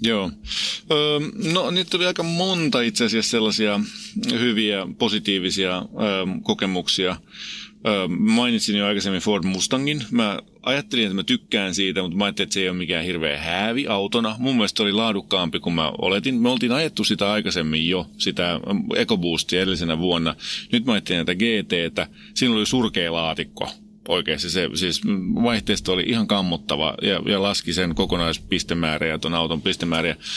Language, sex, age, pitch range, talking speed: Finnish, male, 30-49, 90-140 Hz, 150 wpm